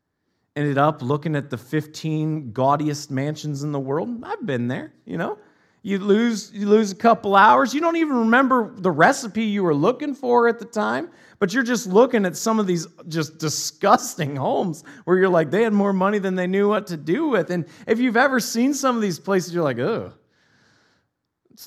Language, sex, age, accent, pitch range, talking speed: English, male, 30-49, American, 160-245 Hz, 205 wpm